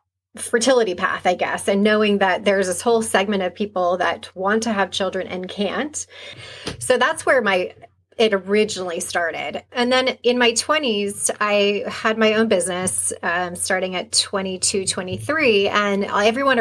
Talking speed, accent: 160 wpm, American